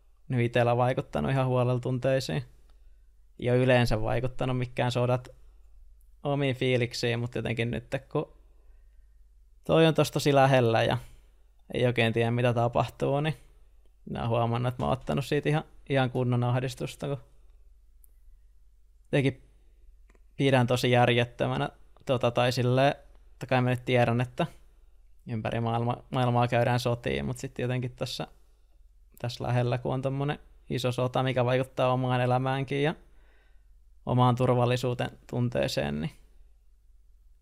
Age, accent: 20-39, native